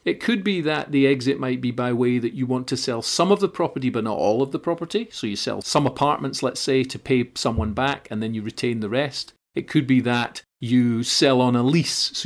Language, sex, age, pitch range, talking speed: English, male, 40-59, 120-140 Hz, 255 wpm